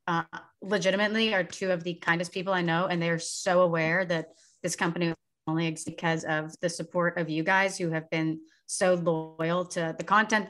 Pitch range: 170-195 Hz